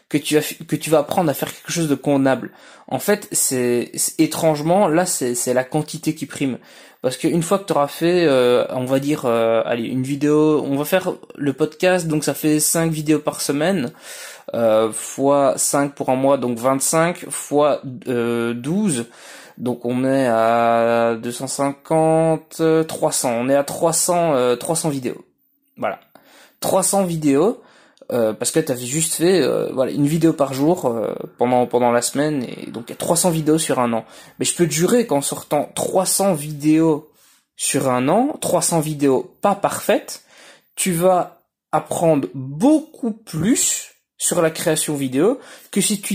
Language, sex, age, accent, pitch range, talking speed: French, male, 20-39, French, 135-175 Hz, 175 wpm